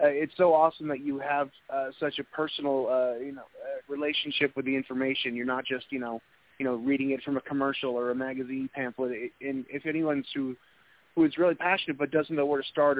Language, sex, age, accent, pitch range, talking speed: English, male, 30-49, American, 125-145 Hz, 230 wpm